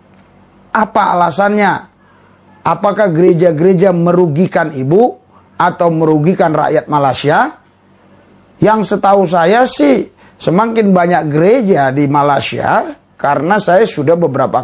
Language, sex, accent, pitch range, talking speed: English, male, Indonesian, 145-180 Hz, 95 wpm